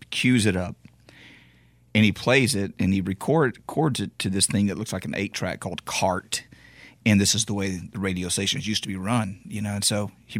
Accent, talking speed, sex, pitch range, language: American, 230 wpm, male, 95-115 Hz, English